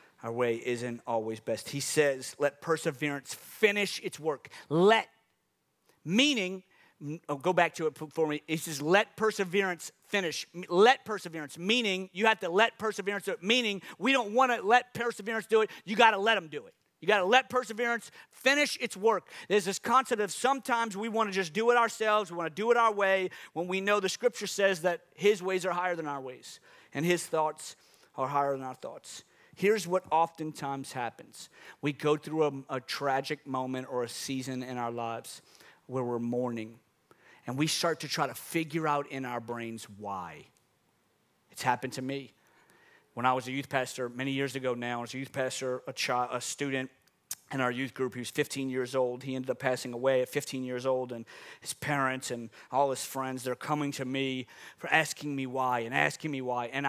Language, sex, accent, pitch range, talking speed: English, male, American, 130-195 Hz, 200 wpm